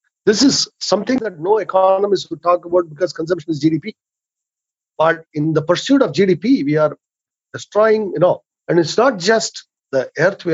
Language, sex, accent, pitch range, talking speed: English, male, Indian, 135-175 Hz, 175 wpm